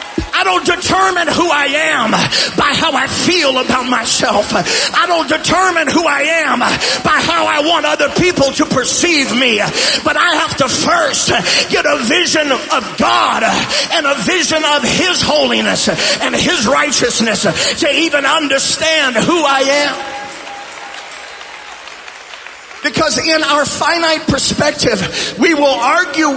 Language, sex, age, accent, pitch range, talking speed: English, male, 40-59, American, 275-325 Hz, 135 wpm